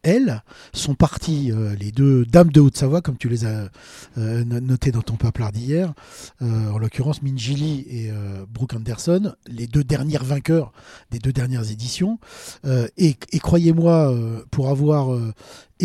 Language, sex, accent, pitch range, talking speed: French, male, French, 125-165 Hz, 165 wpm